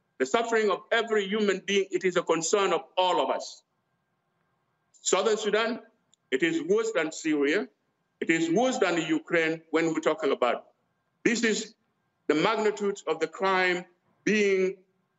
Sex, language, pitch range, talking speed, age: male, English, 170-220 Hz, 155 wpm, 60-79